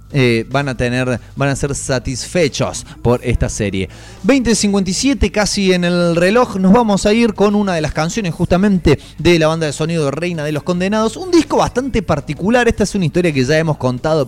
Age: 20-39